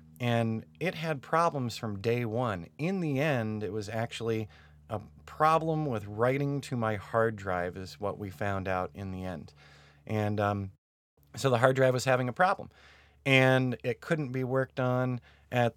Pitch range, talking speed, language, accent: 105-140 Hz, 175 wpm, English, American